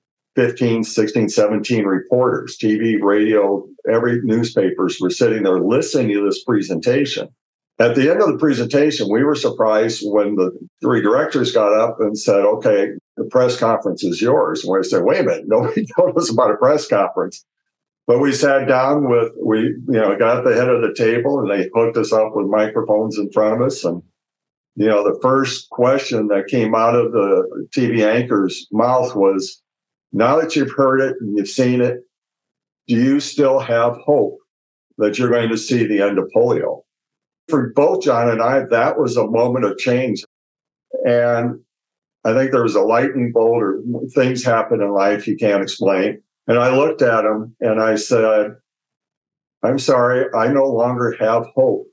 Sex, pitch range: male, 110-135 Hz